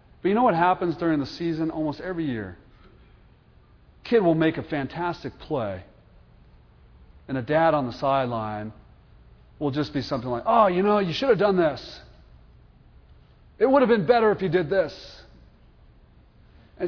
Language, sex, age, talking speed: English, male, 40-59, 165 wpm